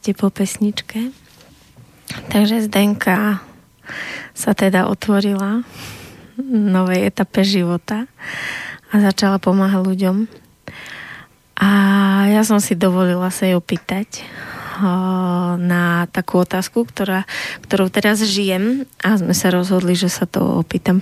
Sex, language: female, Slovak